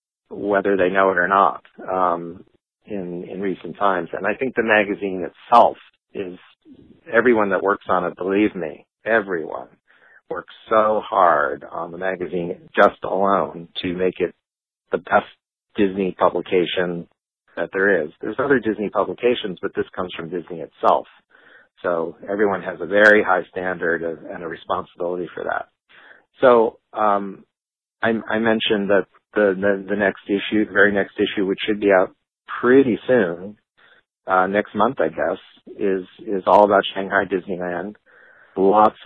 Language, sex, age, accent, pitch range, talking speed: English, male, 50-69, American, 90-105 Hz, 155 wpm